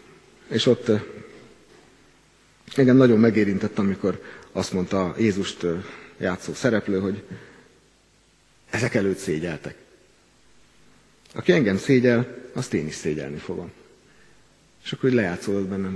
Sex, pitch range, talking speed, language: male, 95-115 Hz, 105 wpm, Hungarian